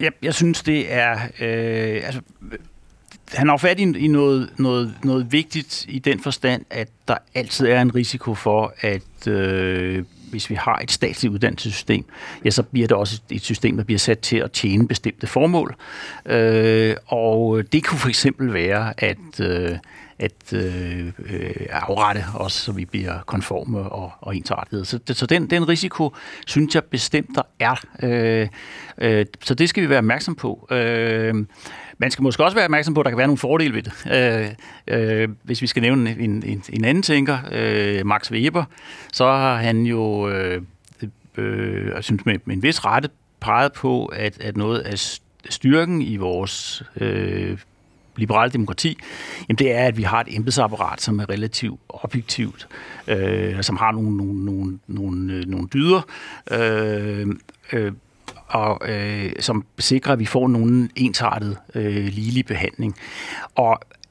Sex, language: male, Danish